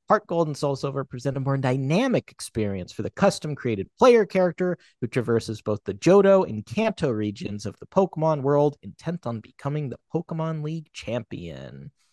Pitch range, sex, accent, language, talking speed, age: 115-165 Hz, male, American, English, 160 wpm, 30-49